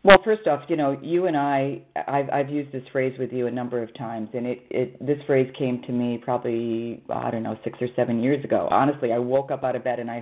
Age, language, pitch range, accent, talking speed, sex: 40-59, English, 125-155 Hz, American, 265 wpm, female